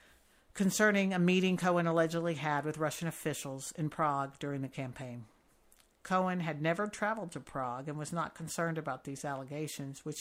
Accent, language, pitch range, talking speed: American, English, 150-180 Hz, 165 wpm